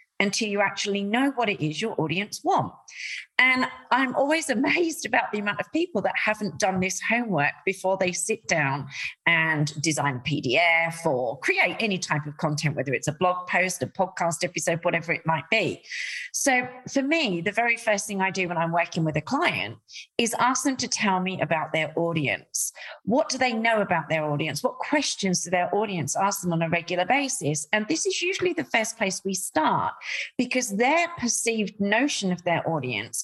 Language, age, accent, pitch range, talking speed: English, 40-59, British, 170-250 Hz, 195 wpm